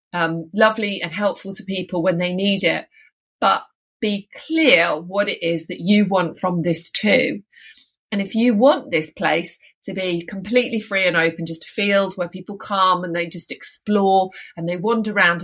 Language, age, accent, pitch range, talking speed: English, 30-49, British, 170-215 Hz, 185 wpm